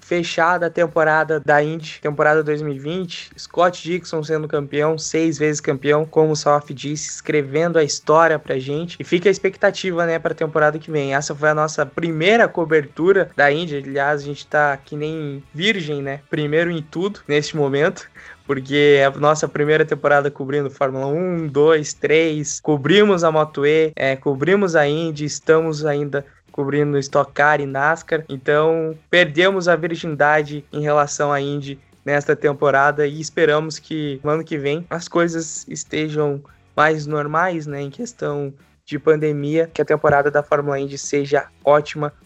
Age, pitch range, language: 20-39, 145-165 Hz, Portuguese